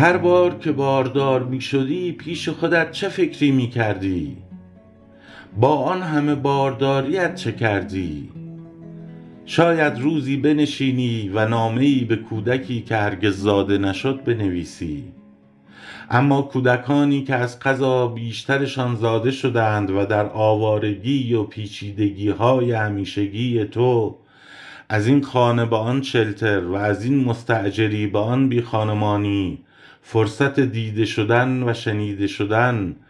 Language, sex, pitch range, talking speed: Persian, male, 105-135 Hz, 120 wpm